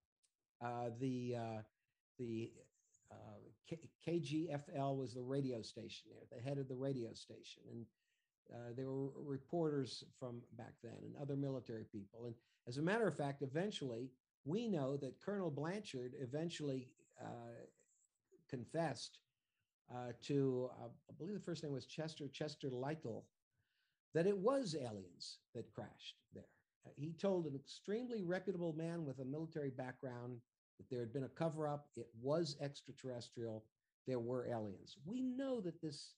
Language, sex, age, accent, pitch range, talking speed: English, male, 60-79, American, 115-150 Hz, 150 wpm